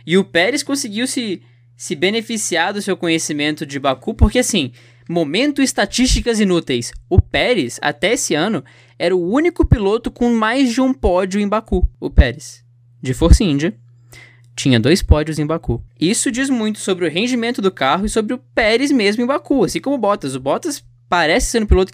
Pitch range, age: 145-230 Hz, 10-29